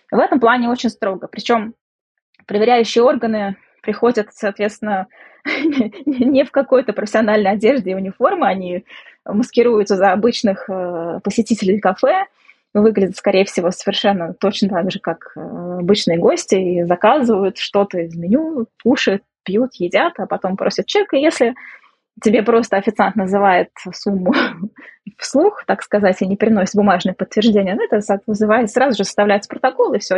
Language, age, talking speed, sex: Russian, 20-39, 135 wpm, female